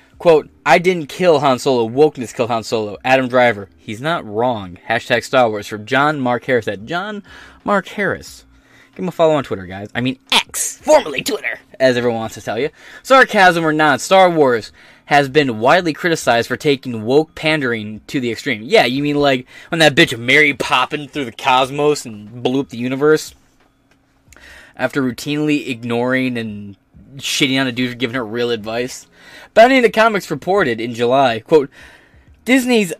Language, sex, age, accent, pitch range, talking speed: English, male, 20-39, American, 120-160 Hz, 180 wpm